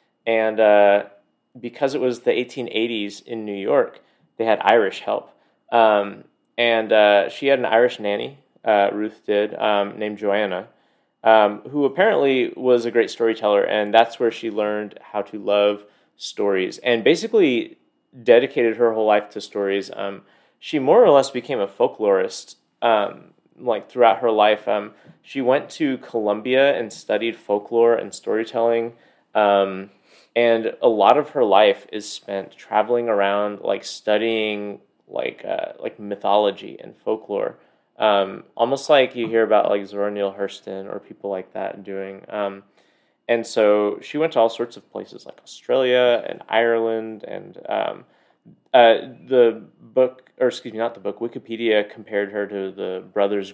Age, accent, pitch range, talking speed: 30-49, American, 100-120 Hz, 155 wpm